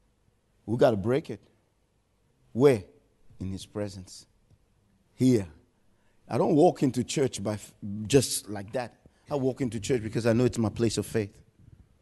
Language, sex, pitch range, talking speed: English, male, 115-190 Hz, 160 wpm